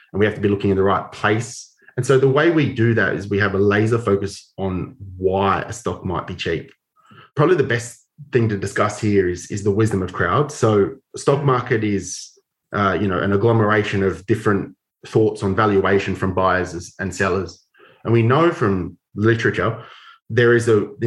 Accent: Australian